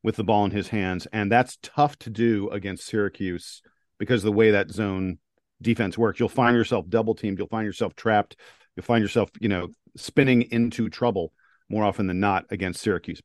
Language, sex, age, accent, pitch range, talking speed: English, male, 50-69, American, 105-135 Hz, 200 wpm